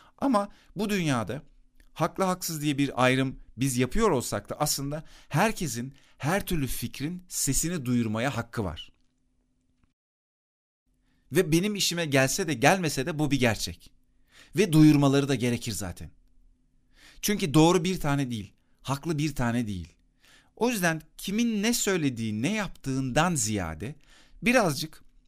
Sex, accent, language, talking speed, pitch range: male, native, Turkish, 130 wpm, 110-155 Hz